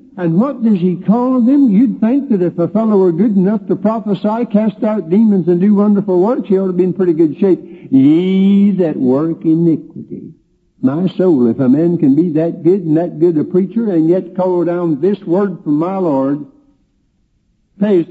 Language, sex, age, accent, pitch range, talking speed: English, male, 60-79, American, 160-235 Hz, 200 wpm